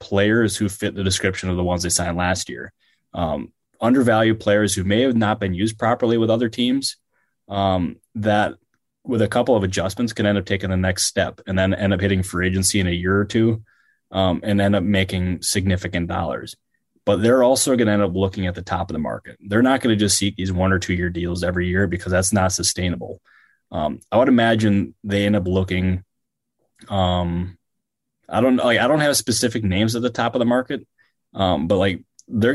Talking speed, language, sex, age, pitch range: 215 wpm, English, male, 20-39, 95-110 Hz